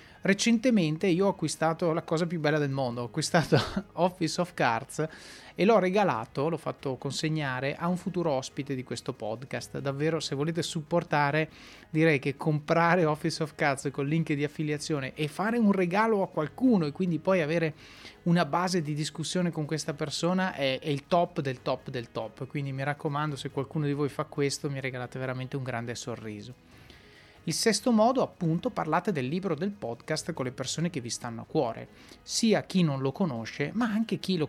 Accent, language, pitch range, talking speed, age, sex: native, Italian, 140-180 Hz, 190 wpm, 30-49, male